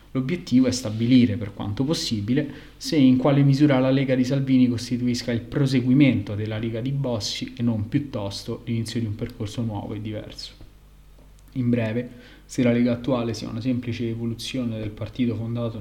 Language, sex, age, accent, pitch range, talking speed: Italian, male, 20-39, native, 115-130 Hz, 170 wpm